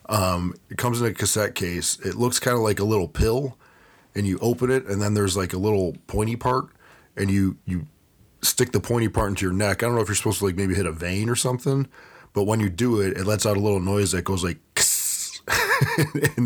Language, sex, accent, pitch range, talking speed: English, male, American, 95-115 Hz, 240 wpm